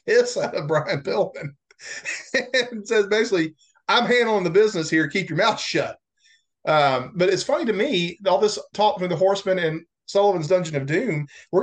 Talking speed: 175 wpm